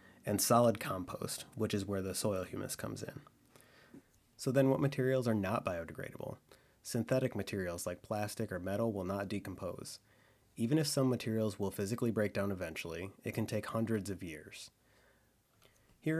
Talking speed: 160 wpm